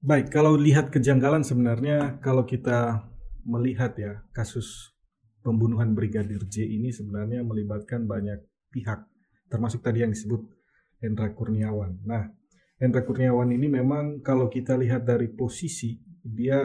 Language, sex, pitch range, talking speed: Indonesian, male, 115-135 Hz, 125 wpm